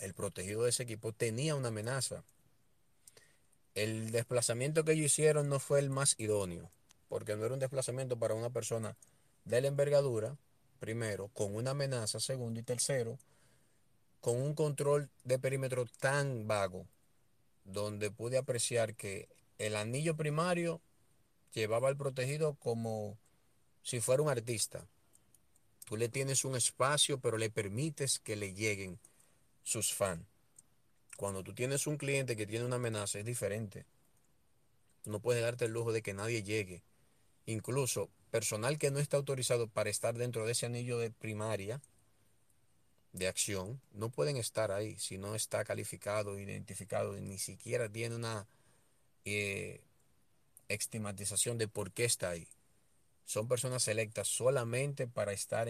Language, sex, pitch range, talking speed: Spanish, male, 105-130 Hz, 145 wpm